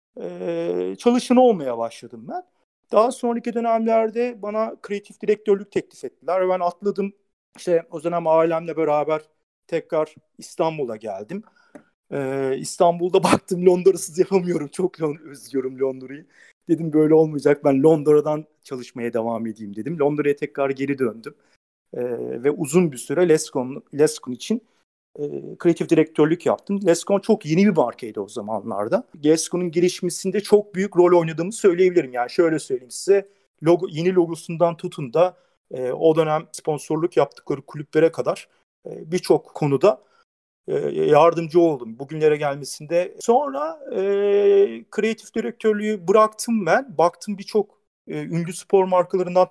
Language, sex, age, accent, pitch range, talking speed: Turkish, male, 40-59, native, 155-205 Hz, 130 wpm